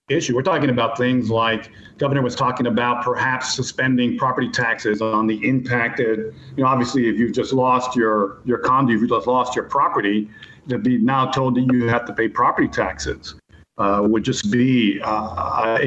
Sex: male